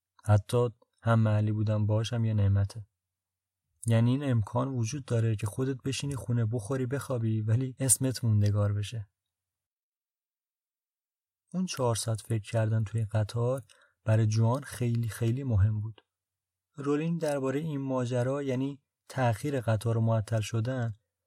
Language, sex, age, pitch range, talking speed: Persian, male, 30-49, 105-130 Hz, 125 wpm